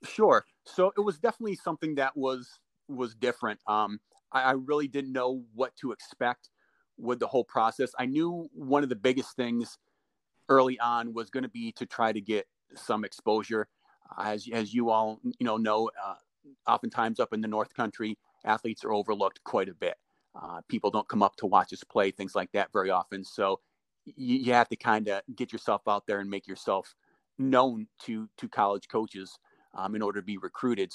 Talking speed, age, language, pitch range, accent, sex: 200 wpm, 40-59, English, 110-125 Hz, American, male